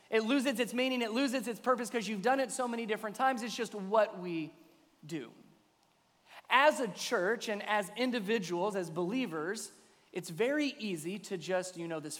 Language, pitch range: English, 180-235 Hz